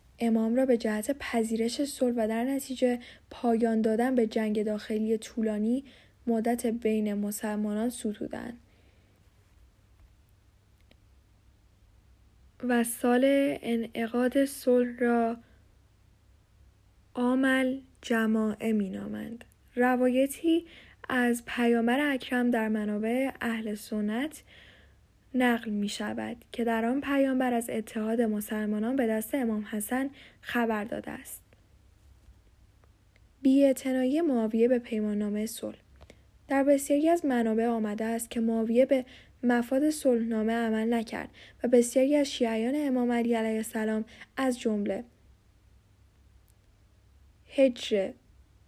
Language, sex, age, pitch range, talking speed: Persian, female, 10-29, 205-245 Hz, 100 wpm